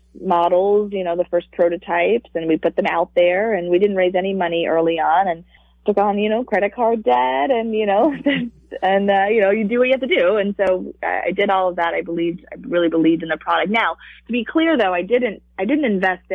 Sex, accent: female, American